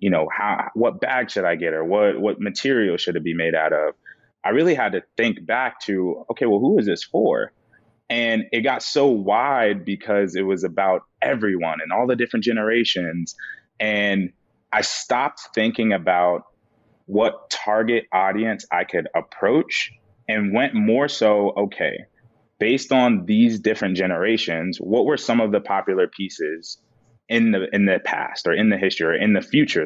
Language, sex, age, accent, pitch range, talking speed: English, male, 20-39, American, 95-120 Hz, 175 wpm